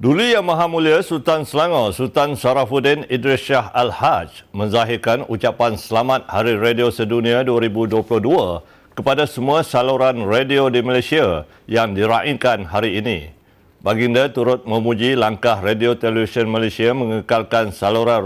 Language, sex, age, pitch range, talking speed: Malay, male, 60-79, 105-125 Hz, 120 wpm